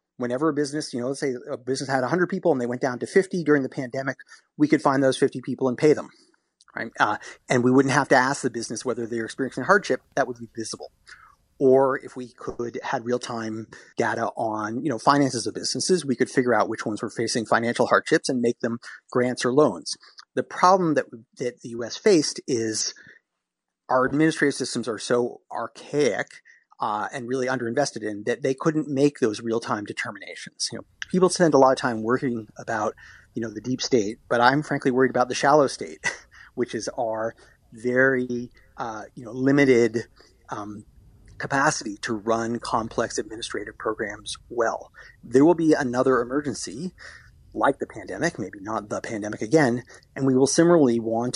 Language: English